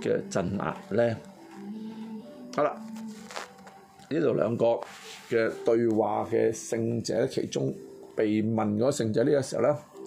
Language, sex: Chinese, male